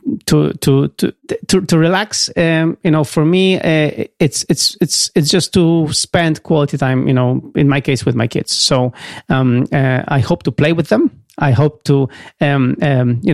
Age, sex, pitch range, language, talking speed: 40-59, male, 130-165 Hz, English, 200 wpm